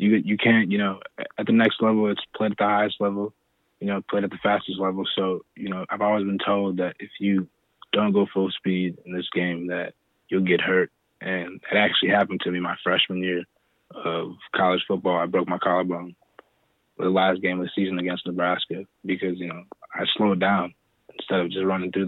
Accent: American